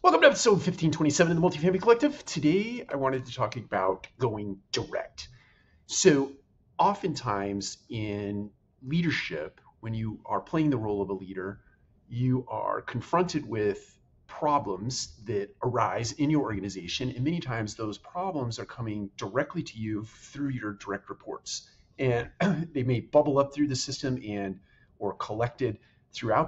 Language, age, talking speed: English, 40-59, 145 wpm